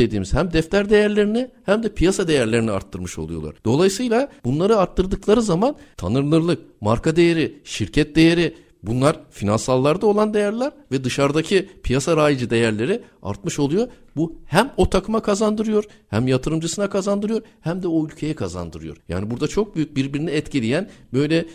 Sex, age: male, 60-79